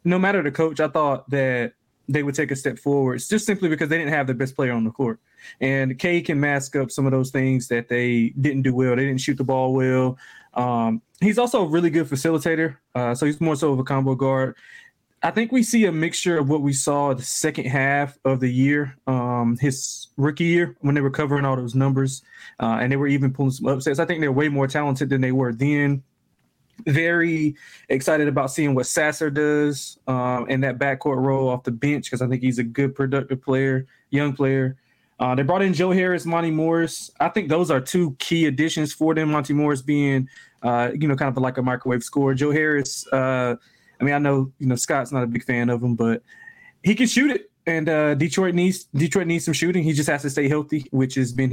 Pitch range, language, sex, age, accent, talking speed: 130-155 Hz, English, male, 20-39, American, 230 wpm